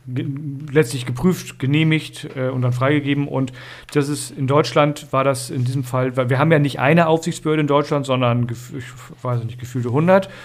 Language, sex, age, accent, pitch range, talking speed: German, male, 40-59, German, 125-160 Hz, 180 wpm